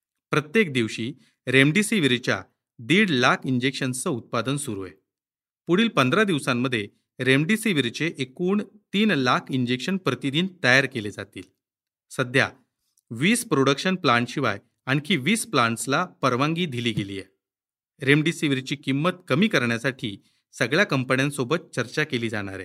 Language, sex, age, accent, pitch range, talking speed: Marathi, male, 40-59, native, 120-175 Hz, 110 wpm